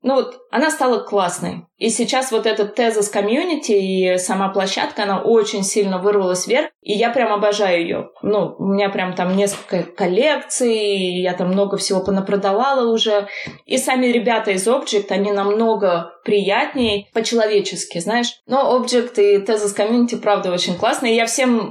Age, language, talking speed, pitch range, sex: 20-39, Russian, 160 wpm, 195-230 Hz, female